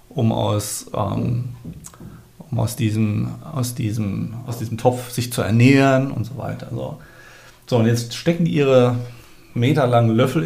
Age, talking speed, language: 40-59, 150 wpm, German